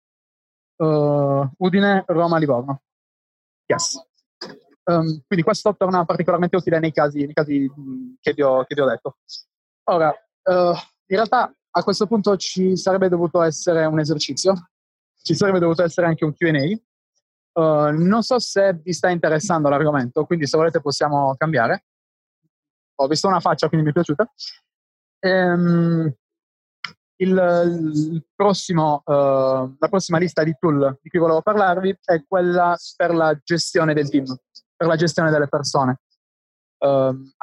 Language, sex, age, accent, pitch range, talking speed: Italian, male, 20-39, native, 145-175 Hz, 145 wpm